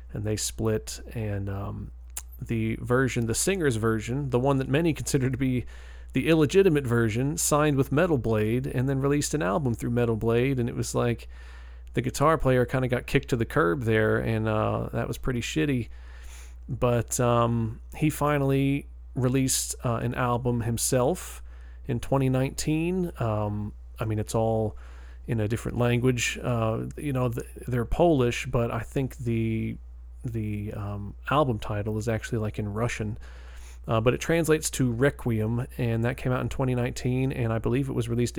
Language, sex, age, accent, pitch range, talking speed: English, male, 40-59, American, 110-130 Hz, 170 wpm